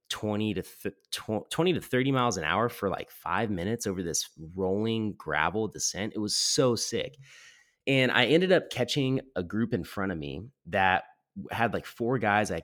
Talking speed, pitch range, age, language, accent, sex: 185 wpm, 95-125 Hz, 30-49, English, American, male